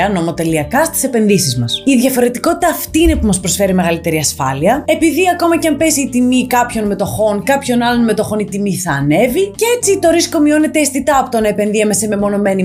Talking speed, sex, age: 195 wpm, female, 20-39